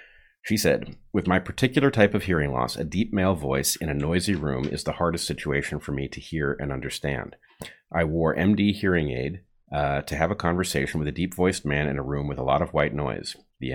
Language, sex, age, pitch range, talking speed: English, male, 40-59, 70-90 Hz, 225 wpm